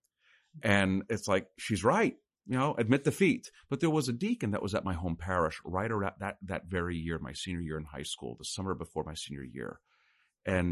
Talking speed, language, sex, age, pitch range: 220 wpm, English, male, 40-59, 80-105 Hz